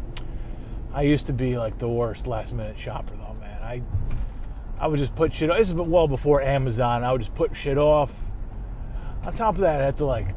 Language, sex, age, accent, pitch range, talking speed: English, male, 20-39, American, 110-145 Hz, 215 wpm